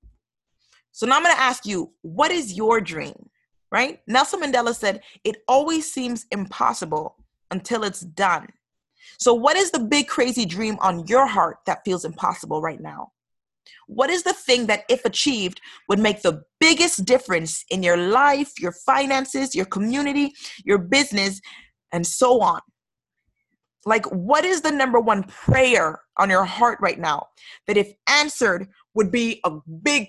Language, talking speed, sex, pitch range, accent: English, 160 wpm, female, 195-285 Hz, American